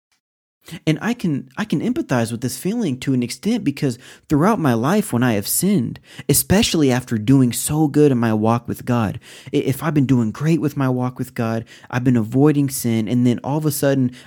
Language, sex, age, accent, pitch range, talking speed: English, male, 30-49, American, 120-155 Hz, 210 wpm